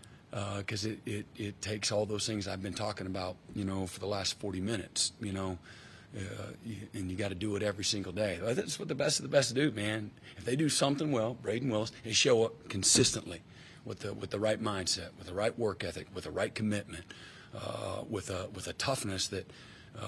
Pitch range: 100-120 Hz